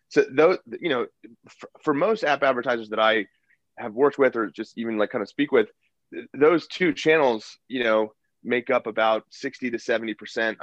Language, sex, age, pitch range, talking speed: English, male, 30-49, 105-130 Hz, 180 wpm